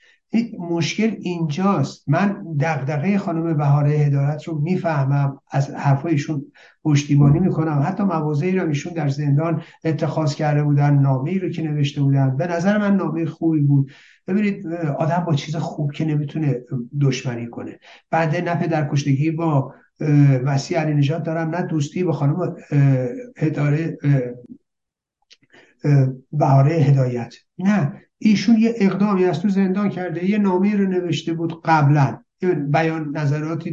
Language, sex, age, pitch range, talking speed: Persian, male, 60-79, 150-200 Hz, 130 wpm